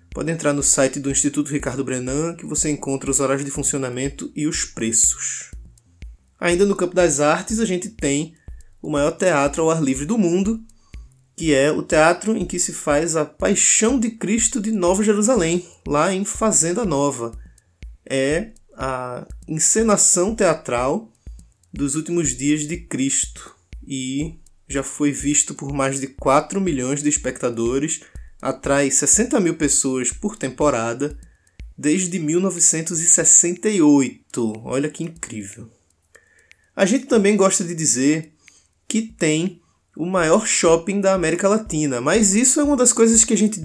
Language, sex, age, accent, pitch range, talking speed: Portuguese, male, 20-39, Brazilian, 135-195 Hz, 145 wpm